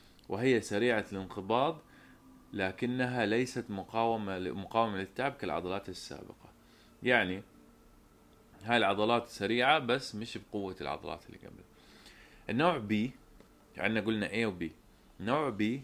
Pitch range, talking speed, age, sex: 95-115 Hz, 105 wpm, 20-39, male